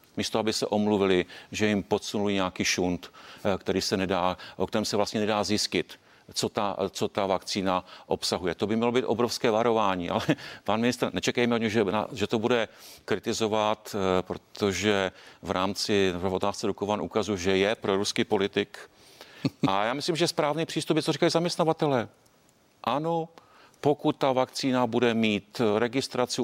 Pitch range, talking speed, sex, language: 100-125 Hz, 150 wpm, male, Czech